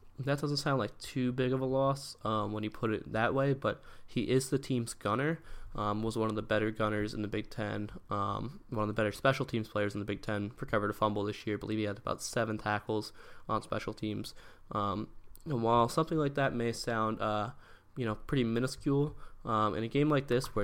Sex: male